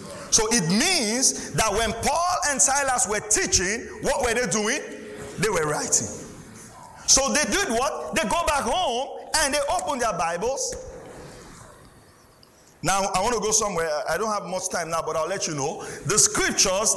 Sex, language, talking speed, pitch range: male, English, 175 wpm, 175-255 Hz